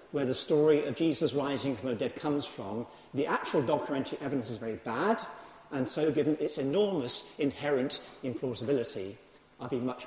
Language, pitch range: English, 115-145 Hz